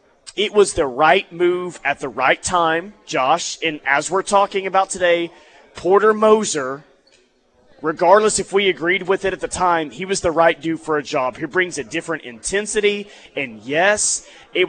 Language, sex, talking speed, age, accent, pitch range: English, male, 175 wpm, 30-49, American, 165-225 Hz